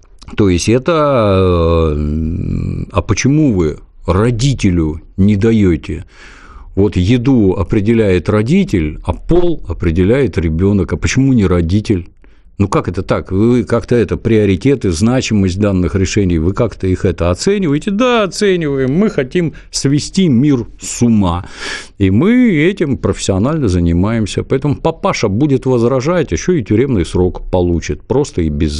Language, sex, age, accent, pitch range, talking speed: Russian, male, 50-69, native, 85-125 Hz, 130 wpm